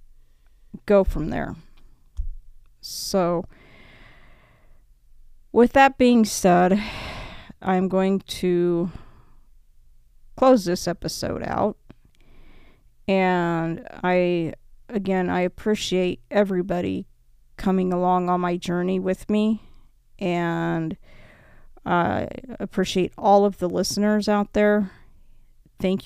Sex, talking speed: female, 90 wpm